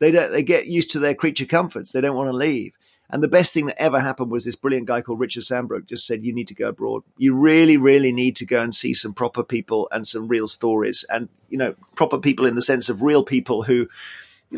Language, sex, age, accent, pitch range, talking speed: English, male, 40-59, British, 125-160 Hz, 260 wpm